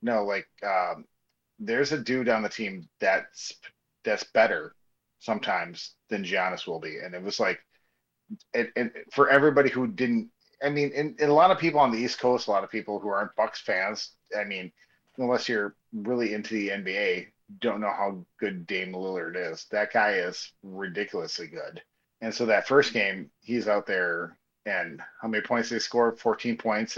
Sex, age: male, 30-49